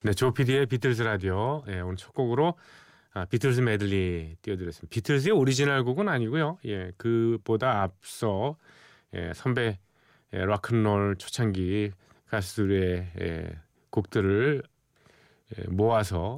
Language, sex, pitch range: Korean, male, 95-140 Hz